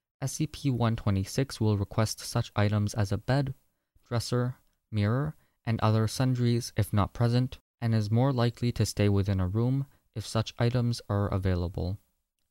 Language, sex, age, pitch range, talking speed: English, male, 20-39, 100-125 Hz, 145 wpm